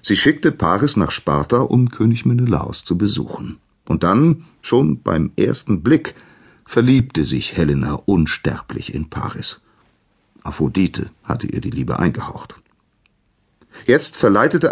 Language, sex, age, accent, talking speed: German, male, 40-59, German, 120 wpm